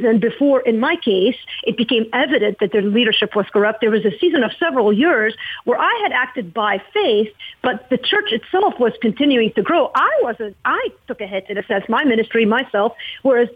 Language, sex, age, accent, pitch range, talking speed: English, female, 50-69, American, 205-255 Hz, 210 wpm